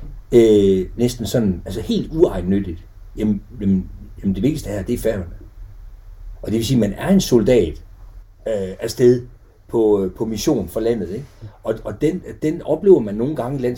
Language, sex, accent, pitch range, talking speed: Danish, male, native, 95-130 Hz, 175 wpm